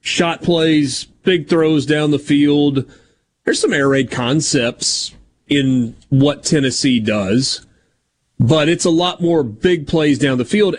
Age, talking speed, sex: 30-49, 145 wpm, male